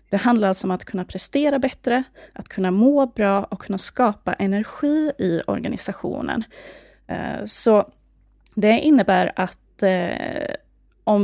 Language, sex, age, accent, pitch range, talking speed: Swedish, female, 20-39, native, 190-230 Hz, 125 wpm